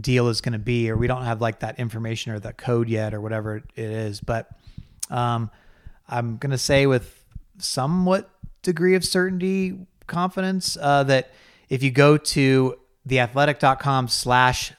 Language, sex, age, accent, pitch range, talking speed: English, male, 30-49, American, 115-135 Hz, 160 wpm